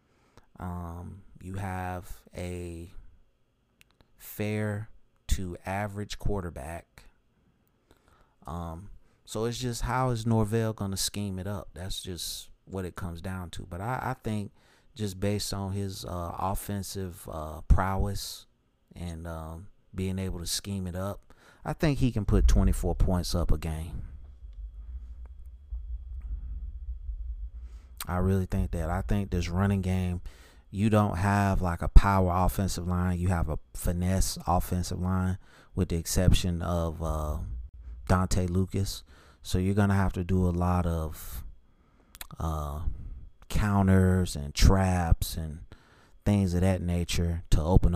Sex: male